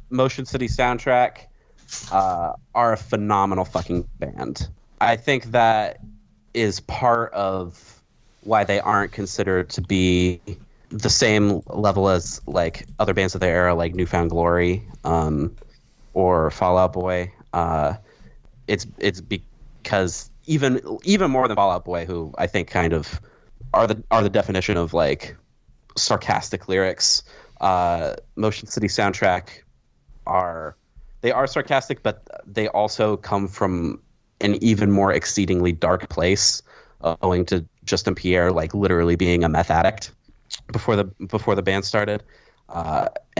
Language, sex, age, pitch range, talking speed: English, male, 30-49, 90-105 Hz, 140 wpm